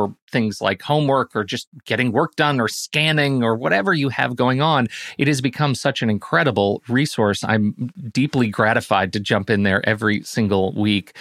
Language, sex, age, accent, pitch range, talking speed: English, male, 40-59, American, 105-135 Hz, 175 wpm